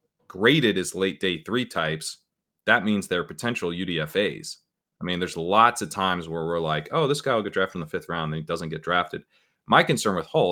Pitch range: 85-110 Hz